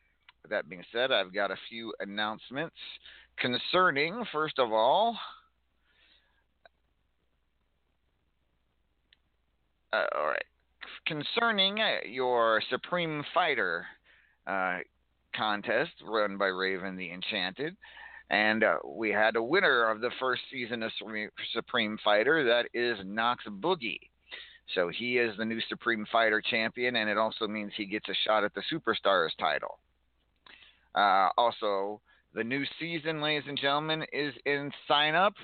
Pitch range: 105-150 Hz